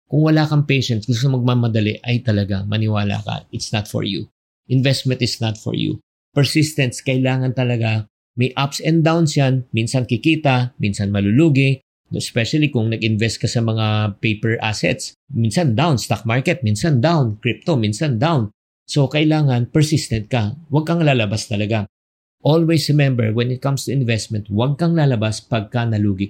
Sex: male